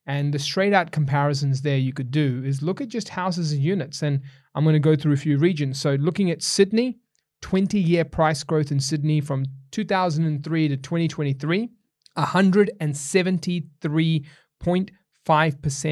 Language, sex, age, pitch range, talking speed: English, male, 30-49, 145-180 Hz, 145 wpm